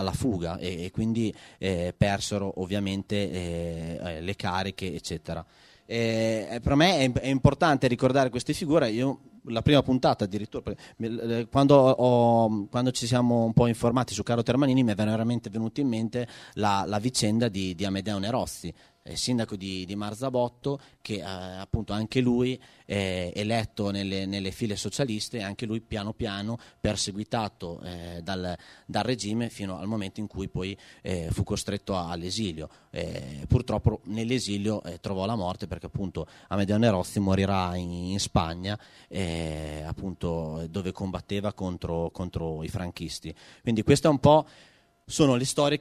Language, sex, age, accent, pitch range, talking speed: Italian, male, 30-49, native, 95-120 Hz, 145 wpm